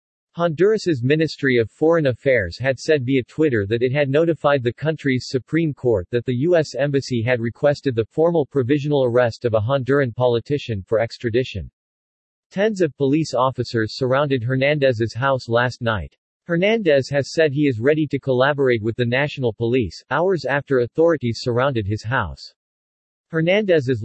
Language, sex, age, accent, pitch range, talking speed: English, male, 40-59, American, 120-150 Hz, 150 wpm